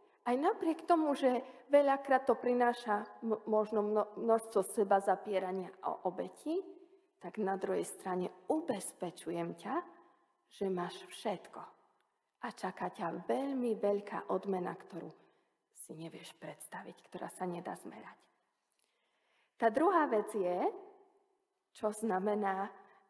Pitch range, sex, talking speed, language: 195-320 Hz, female, 110 wpm, Slovak